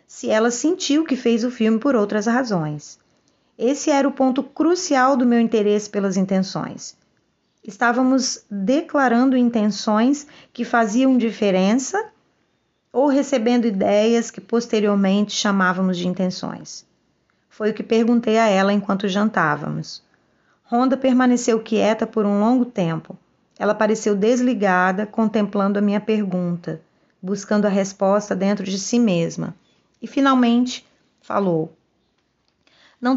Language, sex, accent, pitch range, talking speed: Portuguese, female, Brazilian, 195-245 Hz, 120 wpm